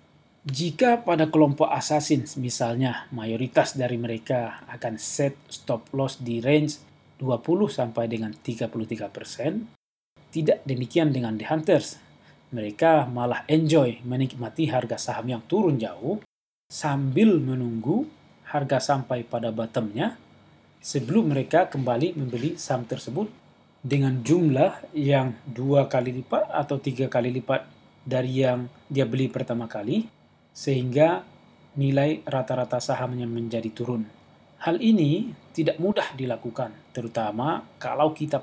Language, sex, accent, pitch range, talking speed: Indonesian, male, native, 120-150 Hz, 110 wpm